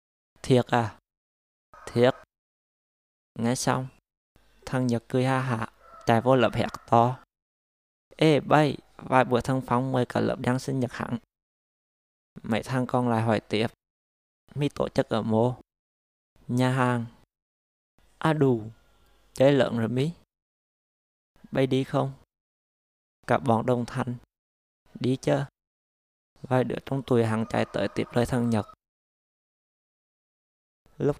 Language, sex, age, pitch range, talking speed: Vietnamese, male, 20-39, 105-130 Hz, 130 wpm